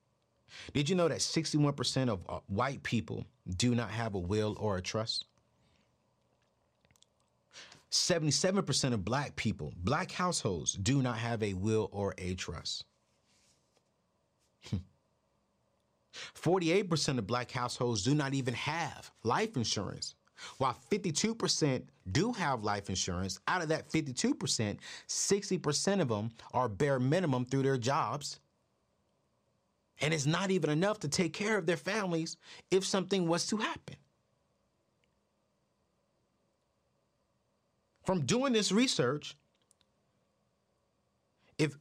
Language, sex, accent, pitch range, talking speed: English, male, American, 125-195 Hz, 115 wpm